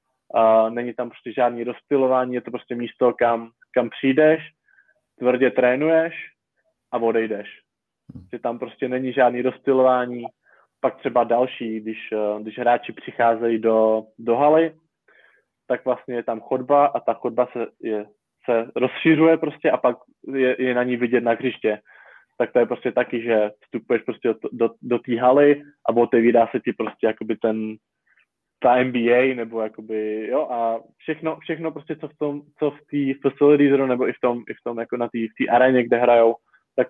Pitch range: 115-130 Hz